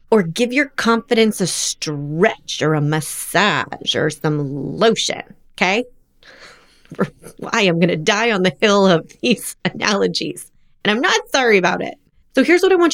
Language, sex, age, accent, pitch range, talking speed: English, female, 30-49, American, 170-235 Hz, 160 wpm